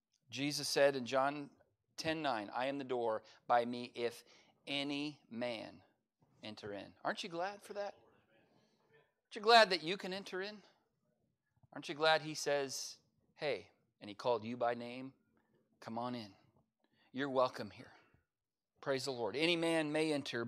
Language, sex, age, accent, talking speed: English, male, 40-59, American, 160 wpm